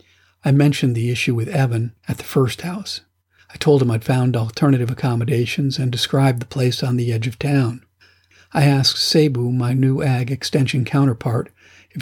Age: 50-69